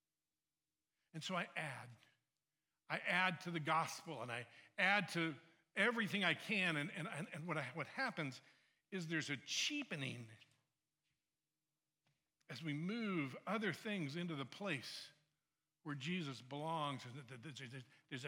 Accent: American